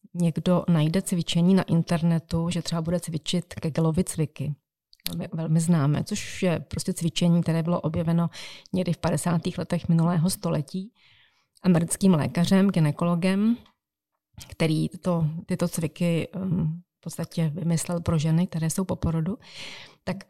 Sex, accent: female, native